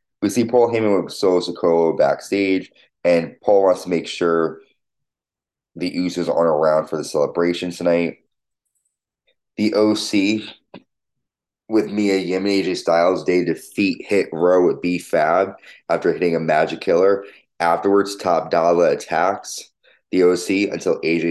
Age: 20-39